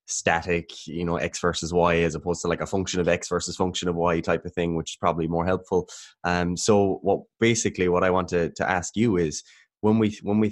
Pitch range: 80-95 Hz